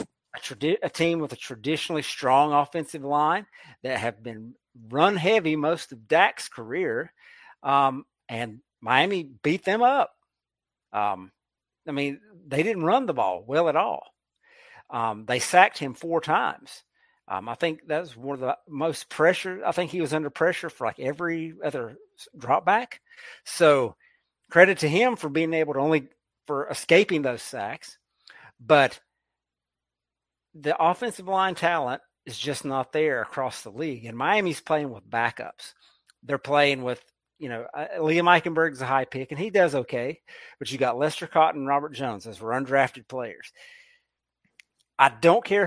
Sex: male